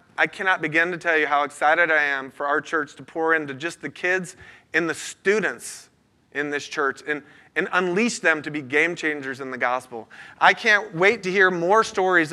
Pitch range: 130-180 Hz